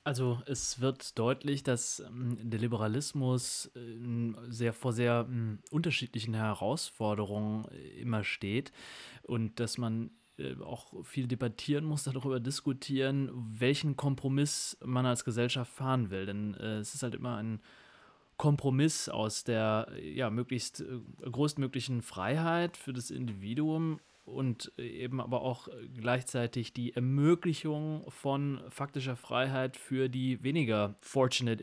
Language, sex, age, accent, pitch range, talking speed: German, male, 30-49, German, 115-140 Hz, 115 wpm